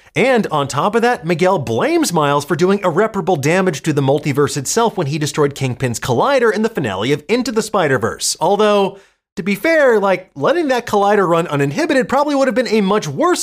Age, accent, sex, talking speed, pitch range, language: 30-49, American, male, 200 wpm, 150-225 Hz, English